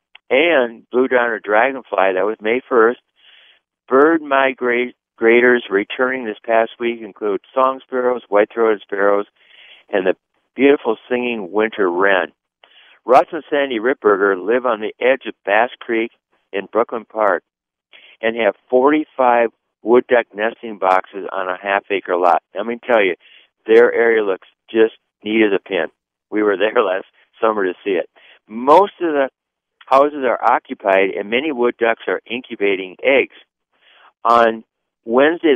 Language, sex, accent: English, male, American